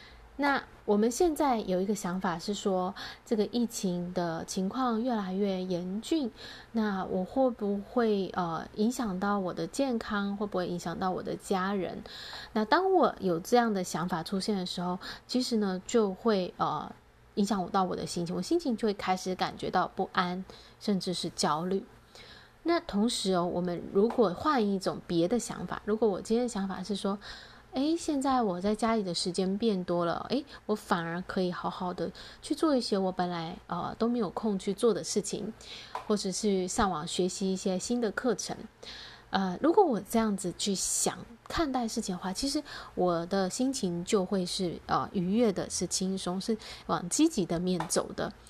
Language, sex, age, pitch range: Chinese, female, 20-39, 180-230 Hz